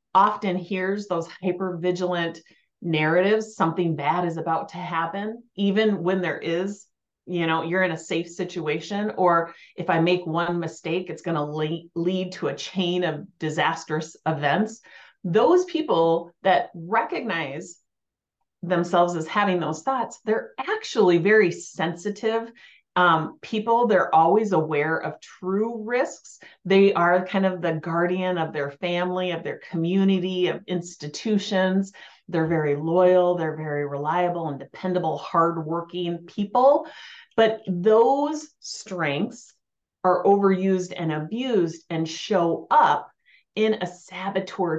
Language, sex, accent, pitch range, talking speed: English, female, American, 165-205 Hz, 125 wpm